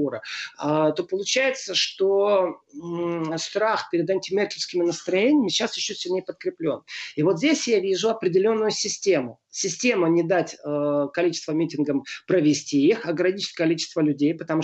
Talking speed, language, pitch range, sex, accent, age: 125 wpm, Russian, 155-215 Hz, male, native, 30-49